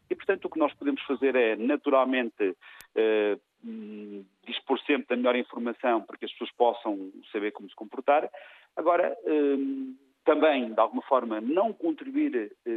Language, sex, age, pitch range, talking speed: Portuguese, male, 40-59, 105-155 Hz, 155 wpm